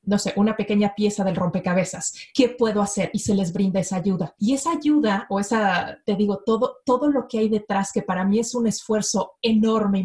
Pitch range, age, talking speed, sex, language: 195-230 Hz, 30-49, 220 wpm, female, Portuguese